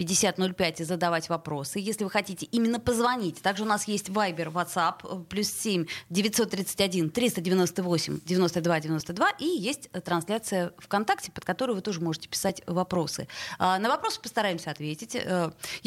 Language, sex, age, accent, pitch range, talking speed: Russian, female, 20-39, native, 175-230 Hz, 115 wpm